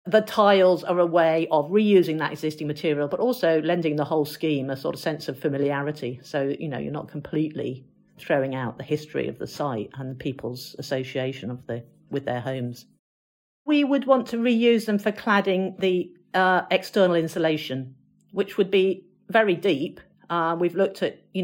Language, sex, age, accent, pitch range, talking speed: English, female, 50-69, British, 135-185 Hz, 180 wpm